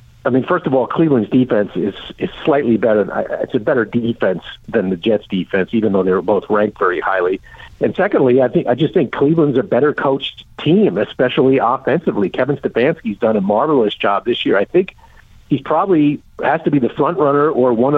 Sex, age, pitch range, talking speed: male, 50-69, 120-150 Hz, 205 wpm